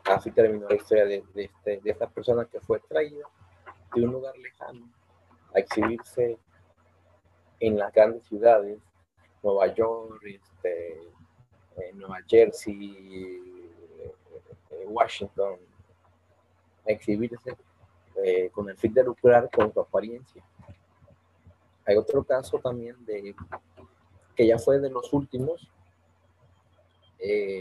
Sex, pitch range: male, 95-125 Hz